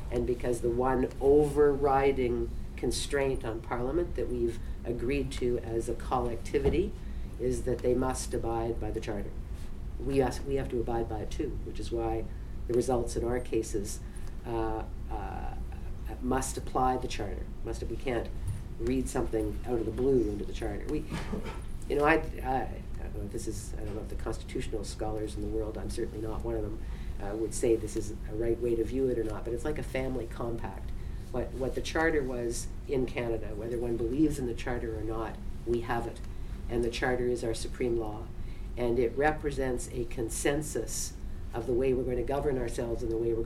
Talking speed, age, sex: 205 wpm, 50-69, female